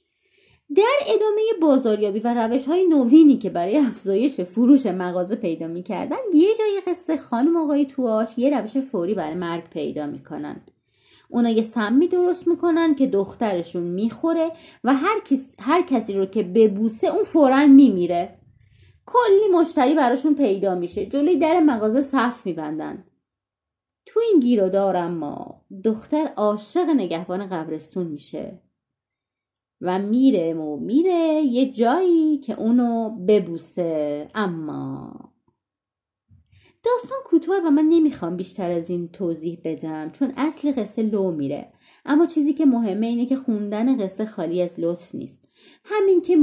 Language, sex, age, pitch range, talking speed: Persian, female, 30-49, 185-300 Hz, 135 wpm